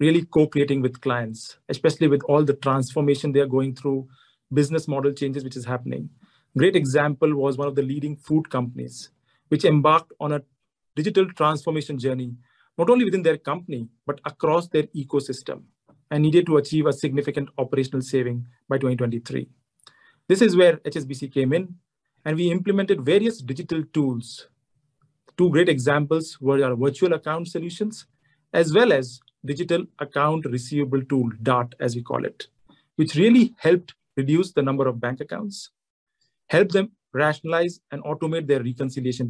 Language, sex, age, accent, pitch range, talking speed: English, male, 40-59, Indian, 135-170 Hz, 155 wpm